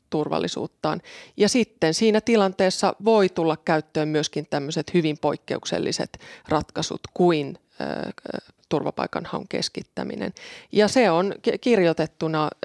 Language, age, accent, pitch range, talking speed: Finnish, 30-49, native, 160-195 Hz, 100 wpm